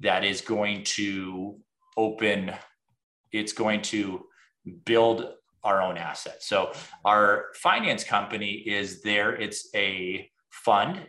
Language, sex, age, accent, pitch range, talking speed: English, male, 30-49, American, 100-110 Hz, 115 wpm